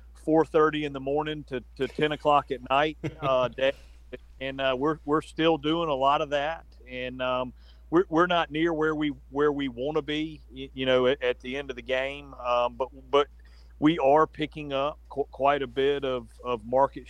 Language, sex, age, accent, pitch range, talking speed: English, male, 40-59, American, 125-145 Hz, 205 wpm